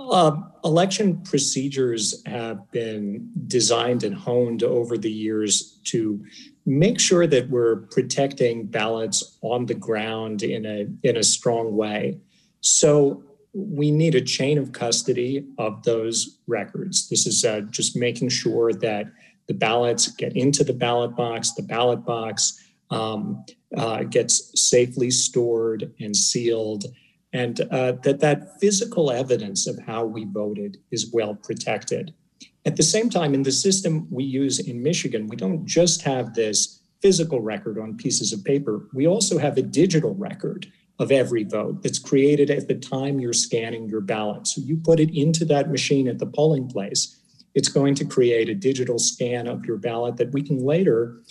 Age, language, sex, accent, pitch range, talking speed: 40-59, English, male, American, 115-155 Hz, 165 wpm